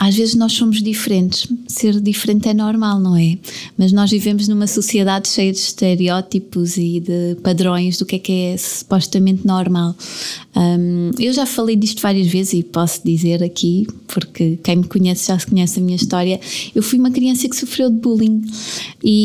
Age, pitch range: 20-39, 190-235 Hz